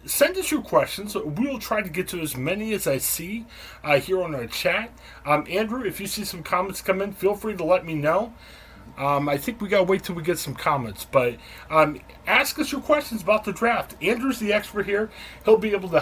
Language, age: English, 30-49